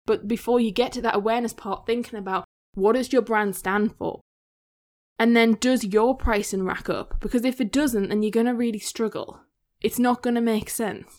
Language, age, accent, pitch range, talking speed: English, 10-29, British, 195-230 Hz, 210 wpm